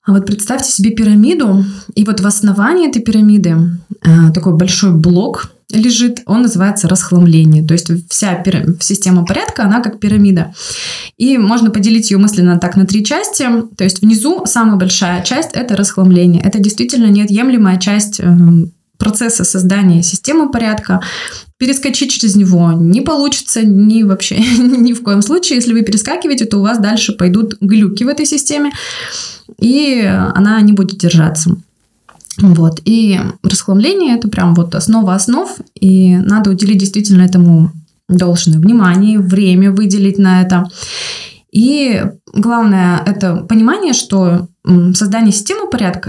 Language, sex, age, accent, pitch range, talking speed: Russian, female, 20-39, native, 185-225 Hz, 140 wpm